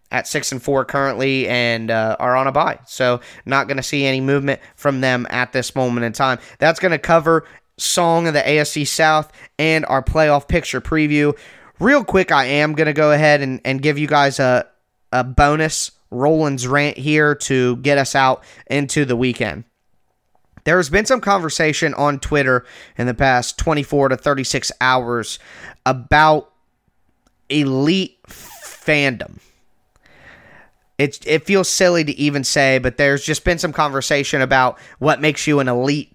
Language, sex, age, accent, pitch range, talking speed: English, male, 20-39, American, 130-155 Hz, 170 wpm